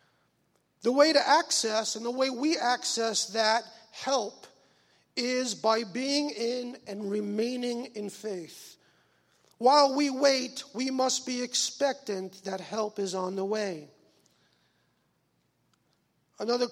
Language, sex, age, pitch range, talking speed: English, male, 50-69, 200-250 Hz, 120 wpm